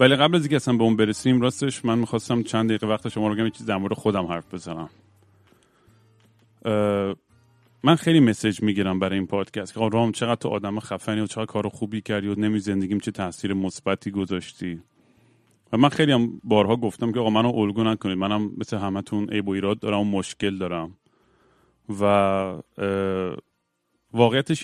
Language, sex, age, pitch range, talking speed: Persian, male, 30-49, 95-115 Hz, 170 wpm